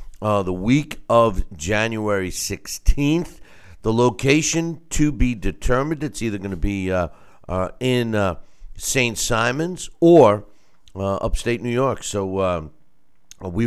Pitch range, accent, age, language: 90-115 Hz, American, 50-69, English